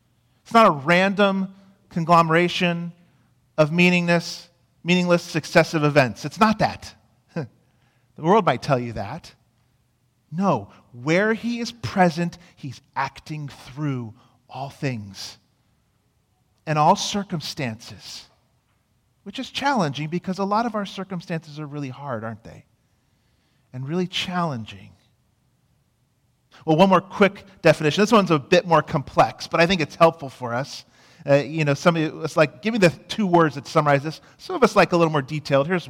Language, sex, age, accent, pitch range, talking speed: English, male, 40-59, American, 130-185 Hz, 150 wpm